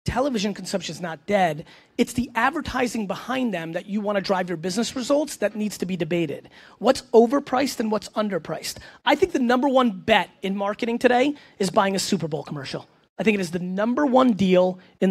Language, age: English, 30-49